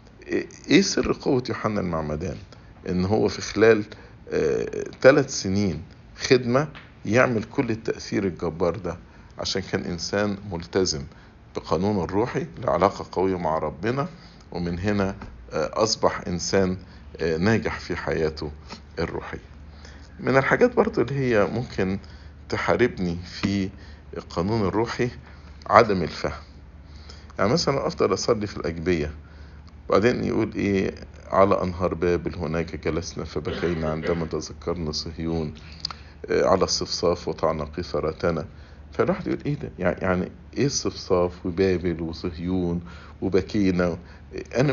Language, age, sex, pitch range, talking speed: English, 50-69, male, 80-105 Hz, 105 wpm